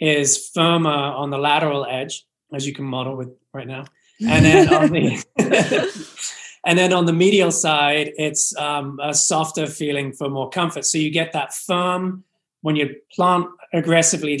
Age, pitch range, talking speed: 20-39, 140-160 Hz, 155 wpm